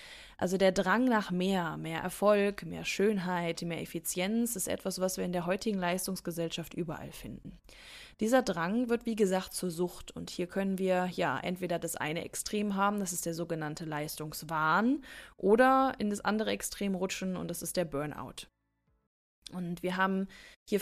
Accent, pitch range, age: German, 180-215 Hz, 20-39